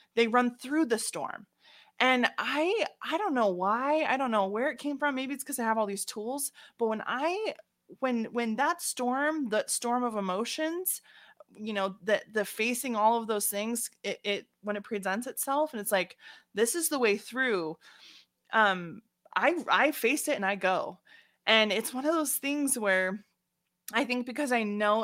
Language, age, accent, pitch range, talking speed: English, 20-39, American, 195-250 Hz, 190 wpm